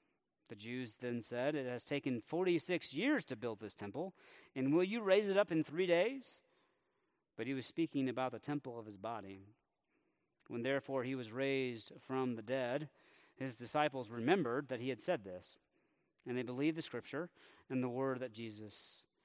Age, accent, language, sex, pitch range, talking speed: 40-59, American, English, male, 125-175 Hz, 180 wpm